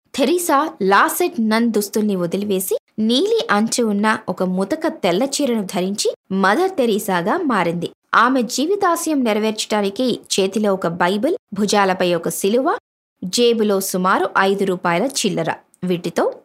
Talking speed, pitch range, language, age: 110 wpm, 190-250 Hz, Telugu, 20-39